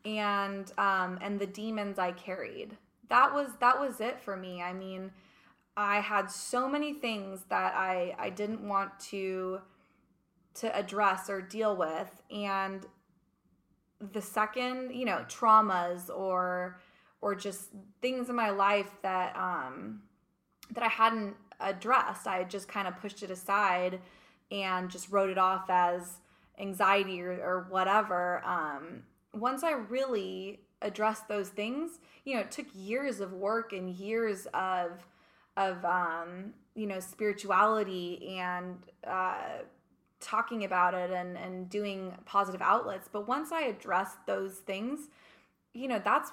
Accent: American